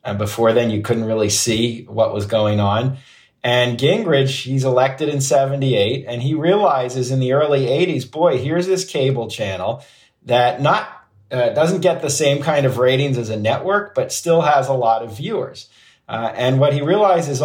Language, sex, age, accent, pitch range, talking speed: English, male, 40-59, American, 120-145 Hz, 185 wpm